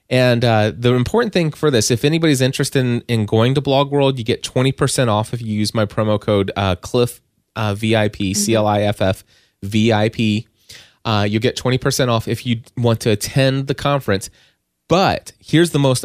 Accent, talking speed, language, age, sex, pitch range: American, 185 wpm, English, 20-39, male, 105-125 Hz